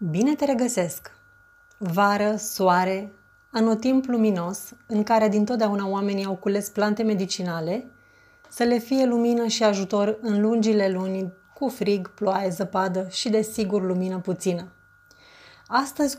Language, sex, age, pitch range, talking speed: Romanian, female, 30-49, 195-235 Hz, 120 wpm